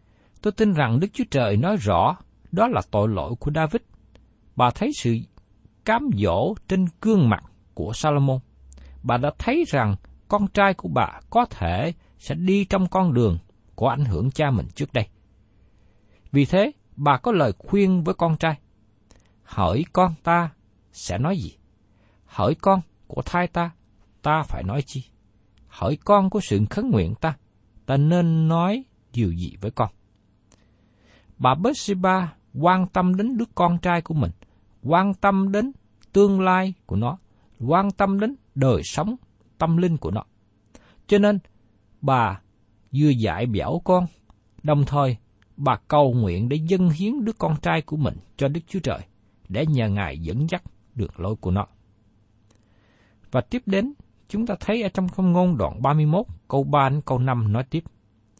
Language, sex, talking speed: Vietnamese, male, 165 wpm